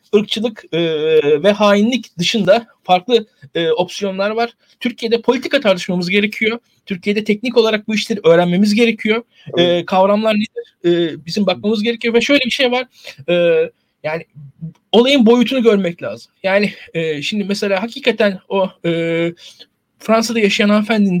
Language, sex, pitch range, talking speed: Turkish, male, 185-235 Hz, 135 wpm